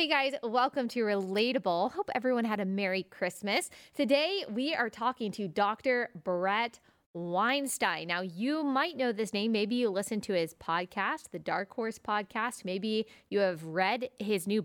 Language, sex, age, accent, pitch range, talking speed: English, female, 20-39, American, 185-240 Hz, 170 wpm